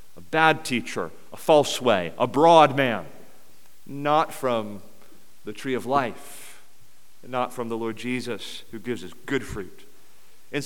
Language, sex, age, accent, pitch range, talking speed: English, male, 40-59, American, 125-160 Hz, 145 wpm